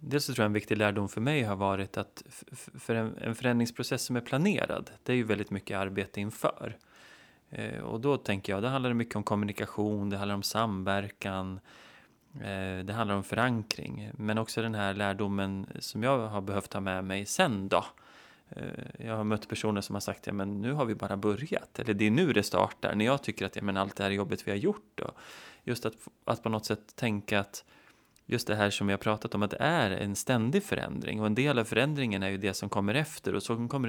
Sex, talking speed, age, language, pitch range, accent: male, 215 wpm, 20-39, English, 100-120 Hz, Swedish